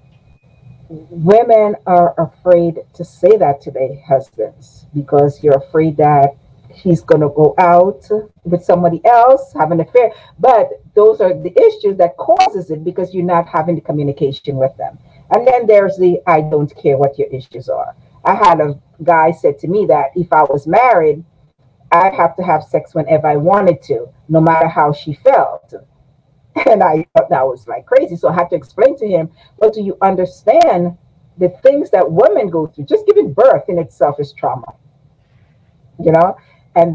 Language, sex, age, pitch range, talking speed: English, female, 50-69, 145-215 Hz, 180 wpm